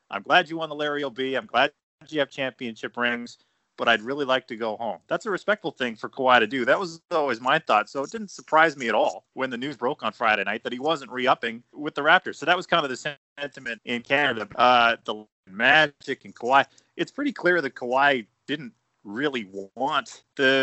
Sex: male